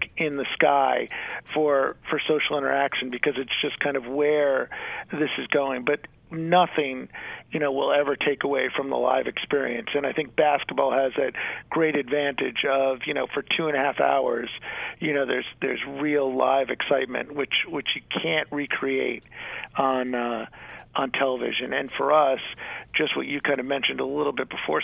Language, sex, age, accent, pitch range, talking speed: English, male, 50-69, American, 135-145 Hz, 180 wpm